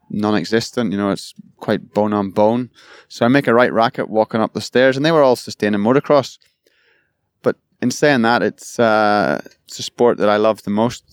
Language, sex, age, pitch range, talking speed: English, male, 20-39, 105-130 Hz, 205 wpm